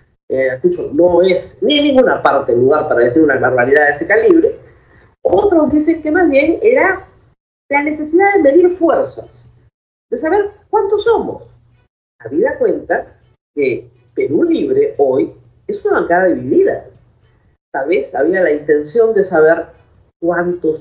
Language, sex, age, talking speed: Spanish, female, 40-59, 140 wpm